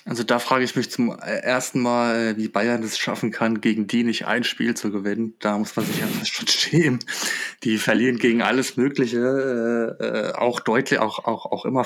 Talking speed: 200 wpm